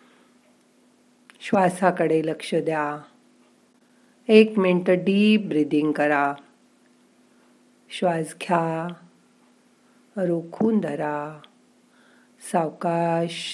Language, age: Marathi, 50-69